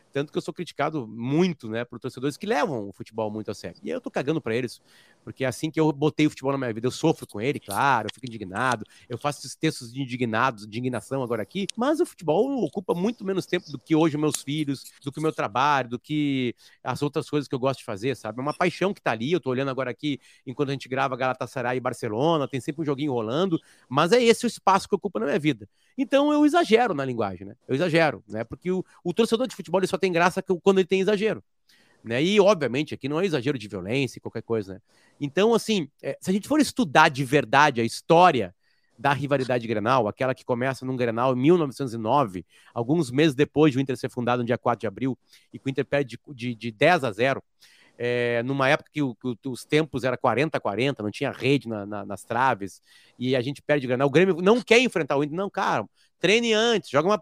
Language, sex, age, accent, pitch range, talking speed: Portuguese, male, 30-49, Brazilian, 125-175 Hz, 240 wpm